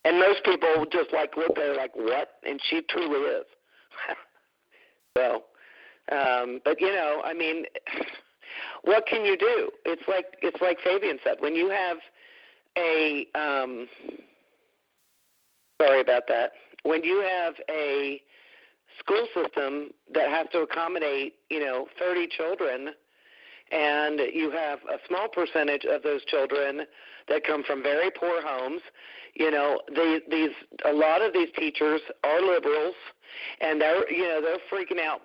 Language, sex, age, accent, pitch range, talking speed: English, male, 50-69, American, 150-195 Hz, 150 wpm